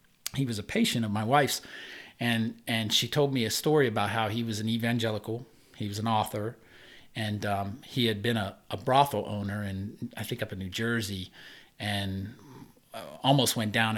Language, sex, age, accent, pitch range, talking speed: English, male, 40-59, American, 105-130 Hz, 190 wpm